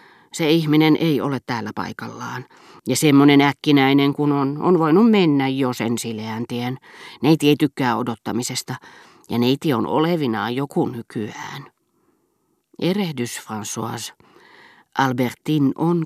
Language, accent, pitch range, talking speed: Finnish, native, 120-150 Hz, 115 wpm